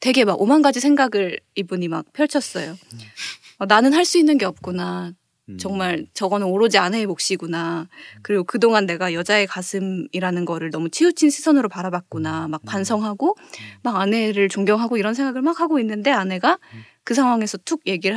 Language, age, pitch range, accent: Korean, 20-39, 180-240 Hz, native